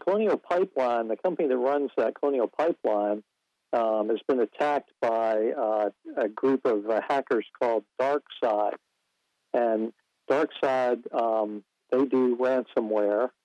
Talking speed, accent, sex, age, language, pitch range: 125 wpm, American, male, 50-69, English, 110-130 Hz